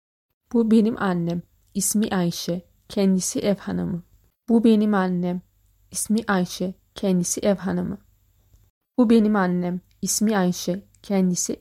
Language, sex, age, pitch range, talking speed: Turkish, female, 30-49, 175-215 Hz, 115 wpm